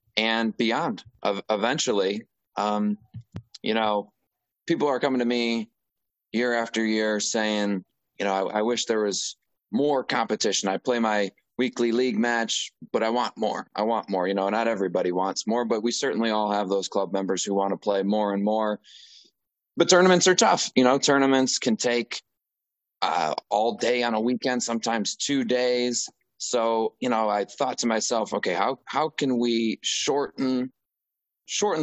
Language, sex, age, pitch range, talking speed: English, male, 20-39, 100-120 Hz, 170 wpm